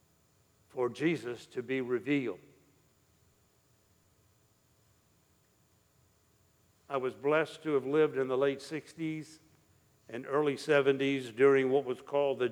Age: 60-79